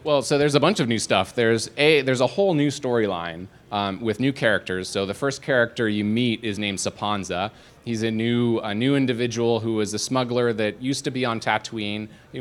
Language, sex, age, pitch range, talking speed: English, male, 30-49, 100-125 Hz, 215 wpm